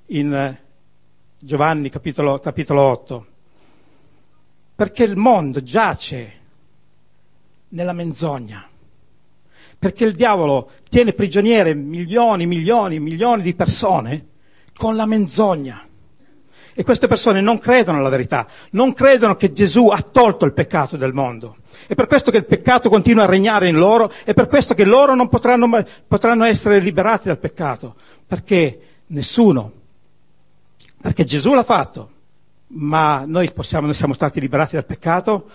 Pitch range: 145-210 Hz